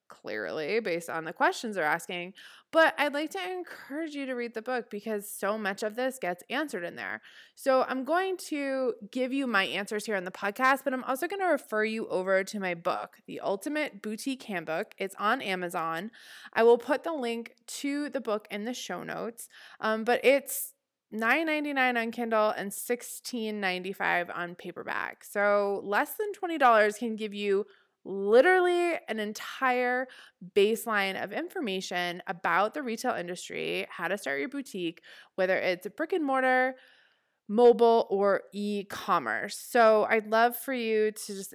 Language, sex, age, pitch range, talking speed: English, female, 20-39, 200-270 Hz, 170 wpm